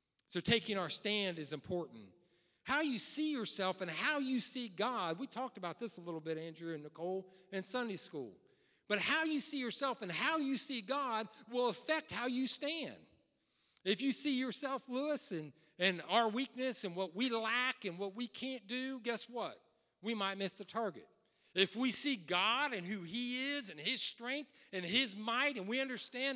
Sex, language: male, English